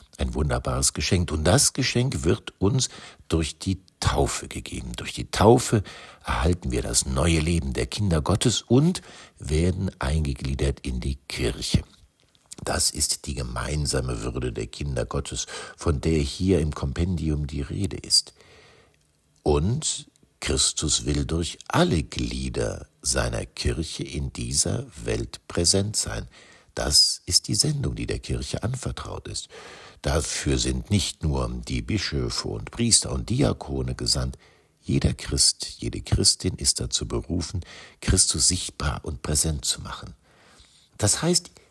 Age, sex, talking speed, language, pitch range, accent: 60-79, male, 135 wpm, German, 70-100 Hz, German